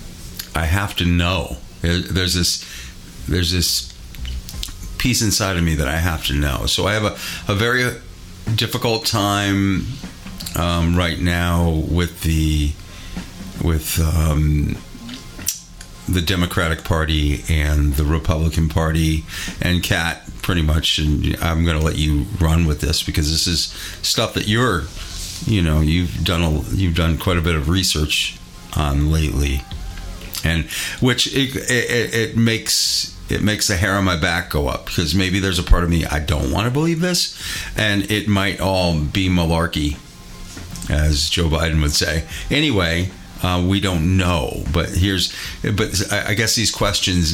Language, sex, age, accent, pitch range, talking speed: English, male, 40-59, American, 80-95 Hz, 155 wpm